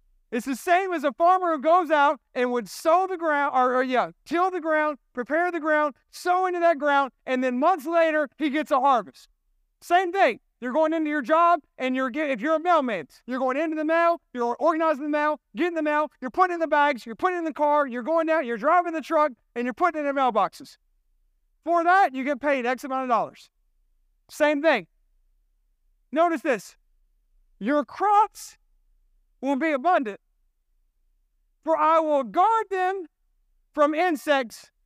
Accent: American